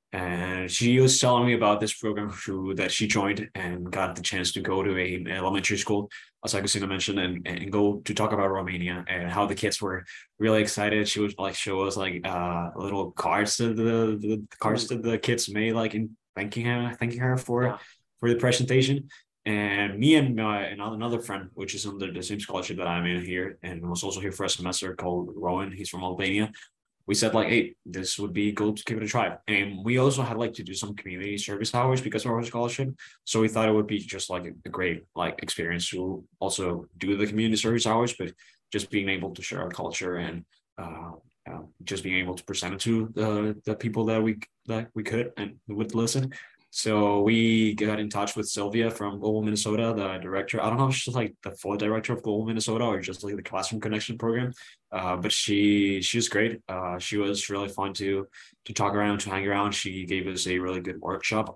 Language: English